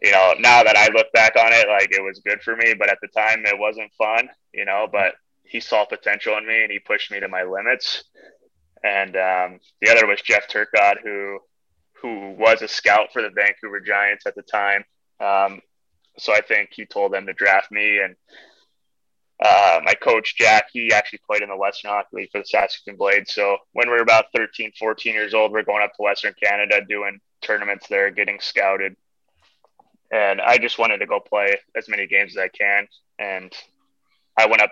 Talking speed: 210 wpm